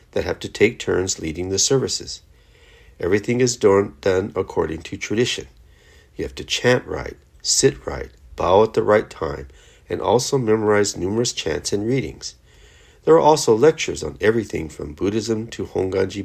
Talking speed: 160 wpm